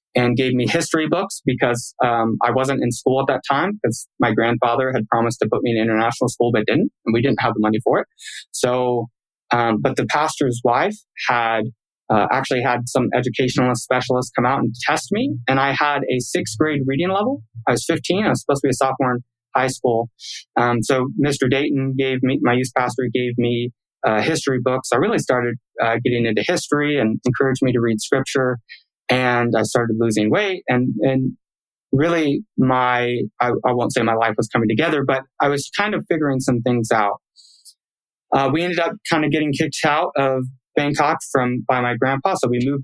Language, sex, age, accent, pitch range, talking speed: English, male, 20-39, American, 115-135 Hz, 205 wpm